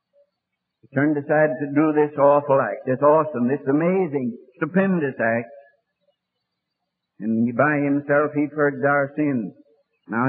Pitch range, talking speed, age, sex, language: 145-175 Hz, 130 wpm, 60-79, male, English